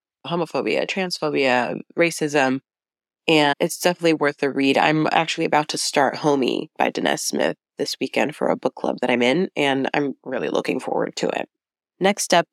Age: 20-39